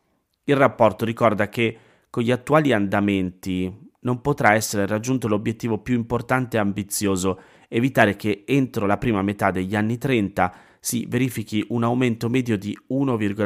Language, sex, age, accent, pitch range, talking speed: Italian, male, 30-49, native, 95-120 Hz, 145 wpm